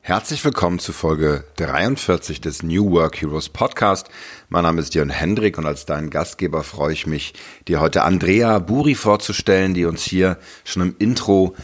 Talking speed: 170 wpm